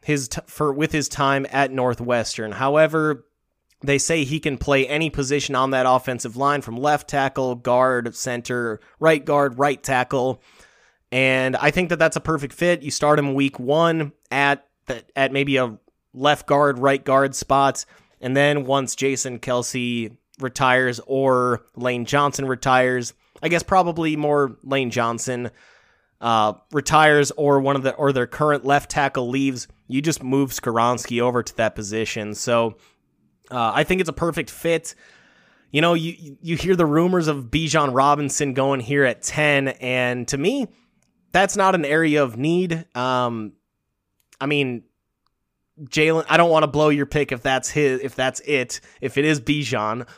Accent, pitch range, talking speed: American, 130-150 Hz, 165 wpm